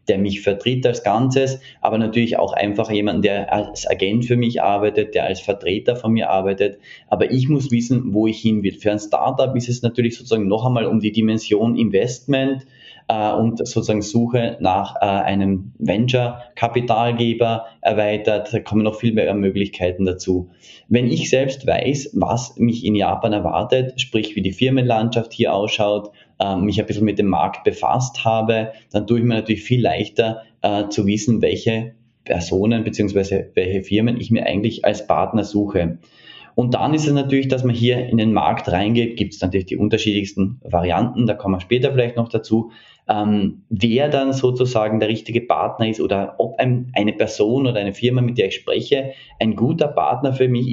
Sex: male